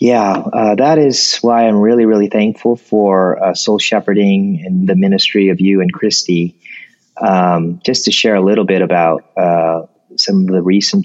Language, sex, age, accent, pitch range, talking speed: English, male, 30-49, American, 90-105 Hz, 180 wpm